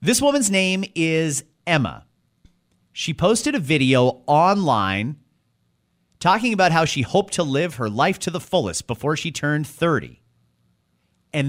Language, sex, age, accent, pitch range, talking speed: English, male, 30-49, American, 130-185 Hz, 140 wpm